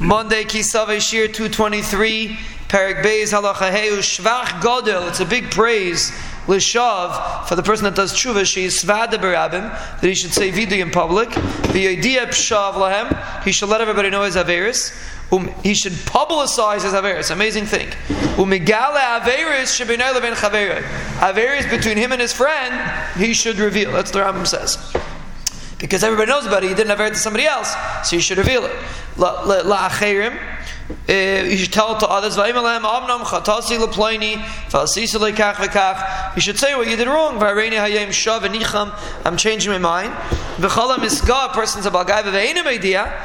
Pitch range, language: 195-225 Hz, English